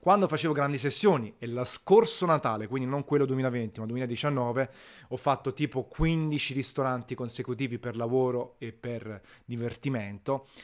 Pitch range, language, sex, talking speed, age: 120-145 Hz, Italian, male, 140 wpm, 30-49